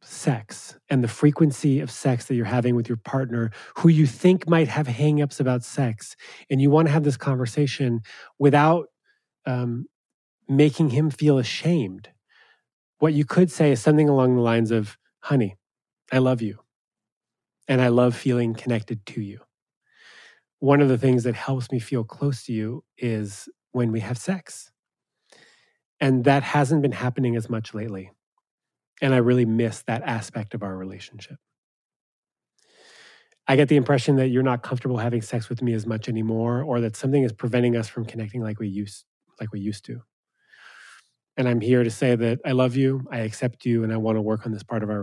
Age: 30-49